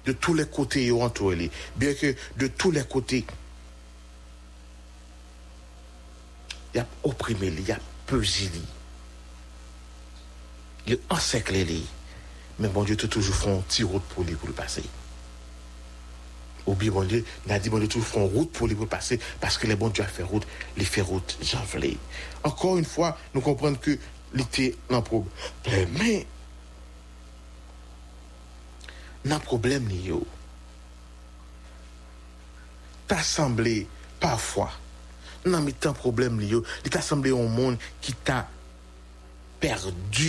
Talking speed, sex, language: 145 wpm, male, English